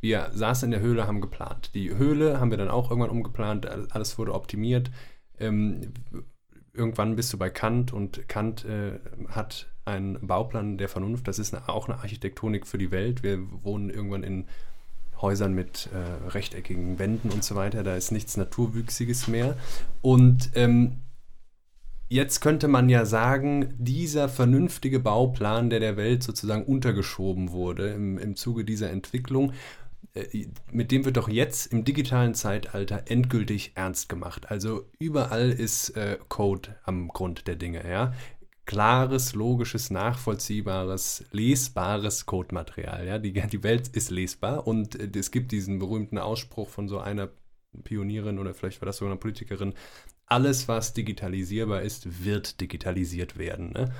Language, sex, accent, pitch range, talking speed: German, male, German, 100-125 Hz, 150 wpm